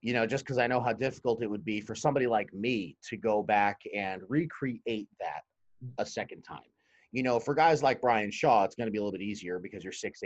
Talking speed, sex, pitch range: 245 wpm, male, 95-120 Hz